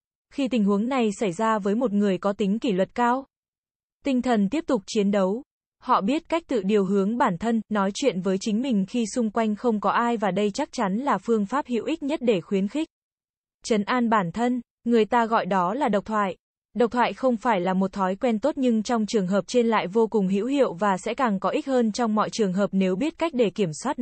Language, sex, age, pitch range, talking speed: Vietnamese, female, 20-39, 200-245 Hz, 245 wpm